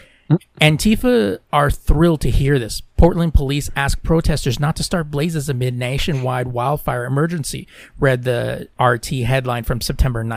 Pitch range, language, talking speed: 135-170 Hz, English, 140 wpm